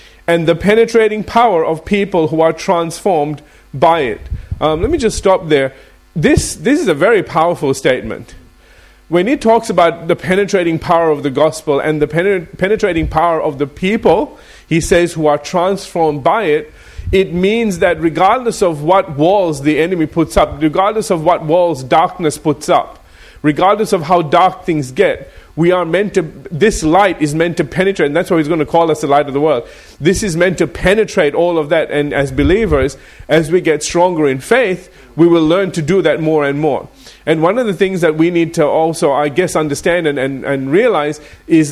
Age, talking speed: 30-49, 200 wpm